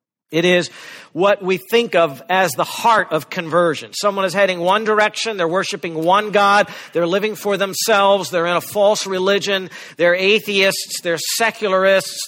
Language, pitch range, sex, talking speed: English, 150-200 Hz, male, 160 wpm